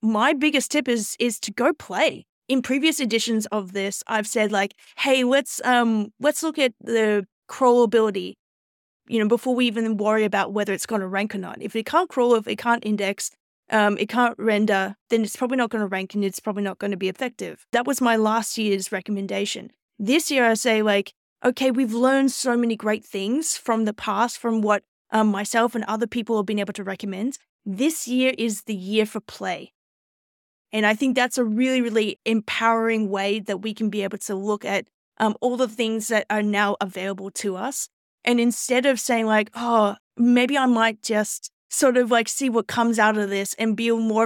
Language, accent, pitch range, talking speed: English, Australian, 210-245 Hz, 210 wpm